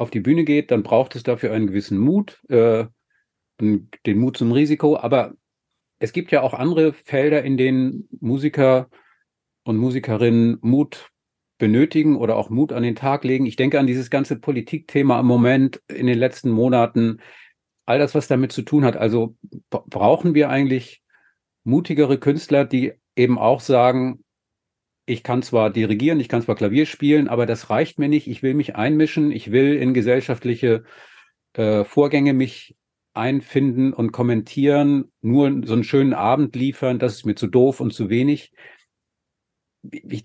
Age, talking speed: 40-59, 165 wpm